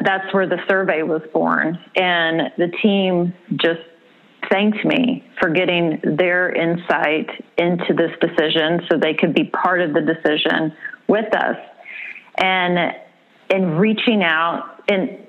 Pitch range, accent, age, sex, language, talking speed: 165-195 Hz, American, 30-49, female, English, 135 wpm